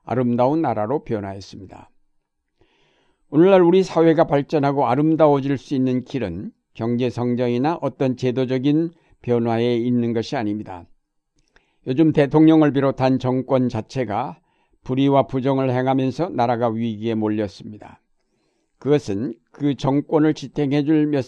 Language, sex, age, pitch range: Korean, male, 60-79, 120-145 Hz